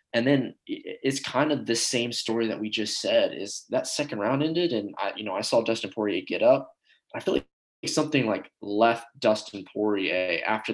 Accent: American